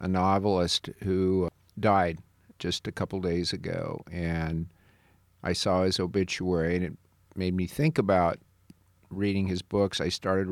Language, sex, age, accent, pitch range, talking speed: English, male, 50-69, American, 90-110 Hz, 145 wpm